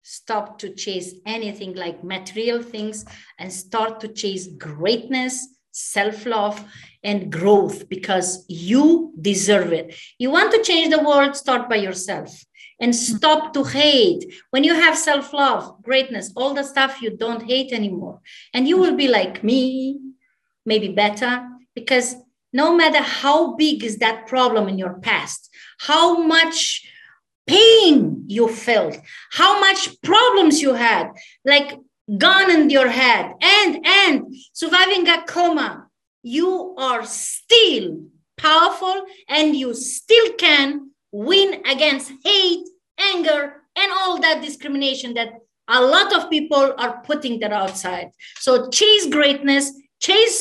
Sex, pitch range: female, 225-325 Hz